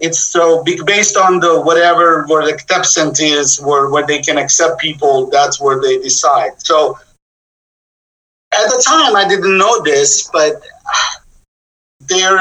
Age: 50-69